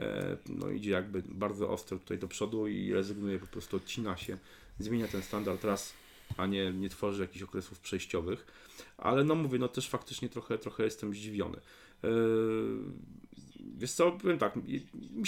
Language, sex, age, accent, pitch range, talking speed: Polish, male, 40-59, native, 95-125 Hz, 155 wpm